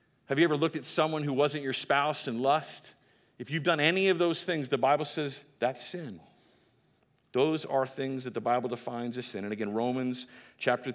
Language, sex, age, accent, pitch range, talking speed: English, male, 40-59, American, 130-170 Hz, 205 wpm